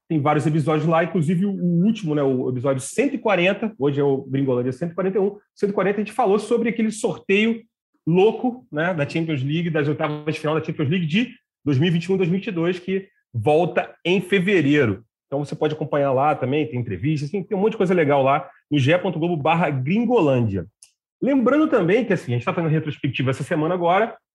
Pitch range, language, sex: 140-200 Hz, Portuguese, male